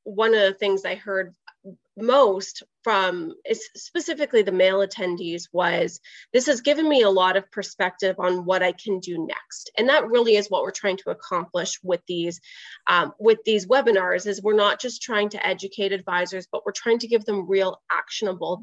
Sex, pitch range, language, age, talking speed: female, 190-225 Hz, English, 20-39, 180 wpm